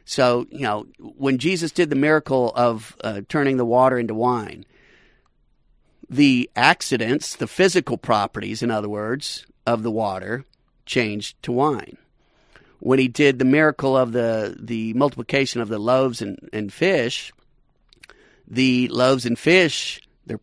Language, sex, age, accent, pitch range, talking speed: English, male, 50-69, American, 115-140 Hz, 145 wpm